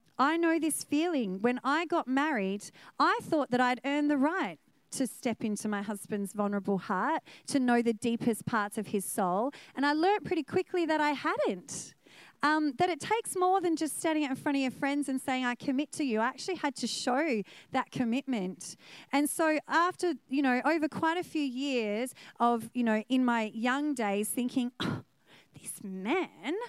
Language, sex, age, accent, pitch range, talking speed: English, female, 30-49, Australian, 235-330 Hz, 190 wpm